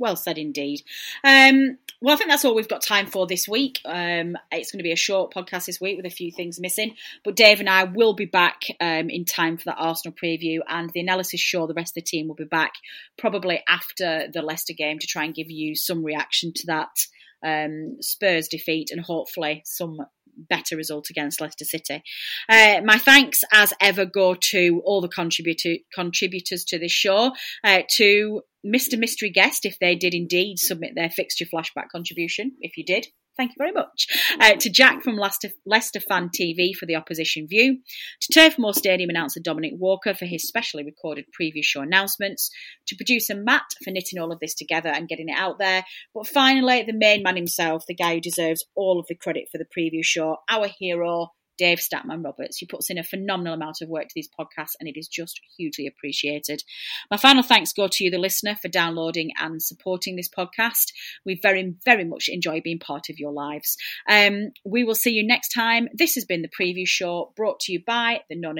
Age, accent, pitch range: 30-49, British, 165-210 Hz